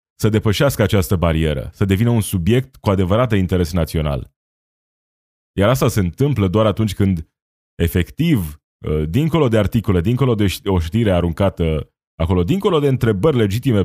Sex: male